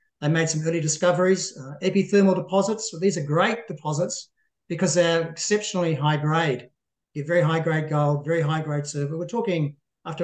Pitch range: 150-170 Hz